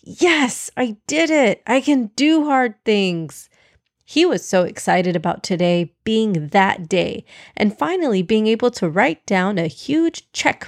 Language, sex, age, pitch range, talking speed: English, female, 30-49, 185-275 Hz, 155 wpm